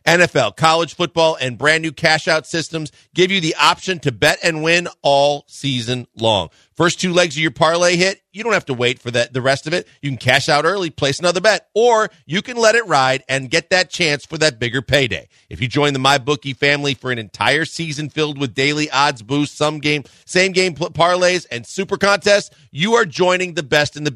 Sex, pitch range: male, 130-165 Hz